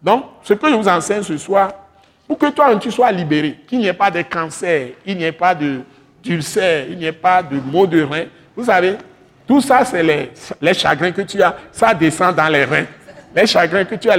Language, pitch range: French, 160-205 Hz